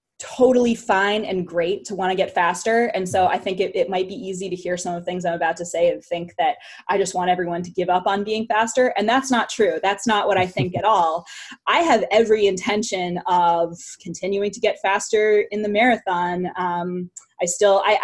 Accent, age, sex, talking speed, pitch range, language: American, 20-39, female, 225 wpm, 180-220 Hz, English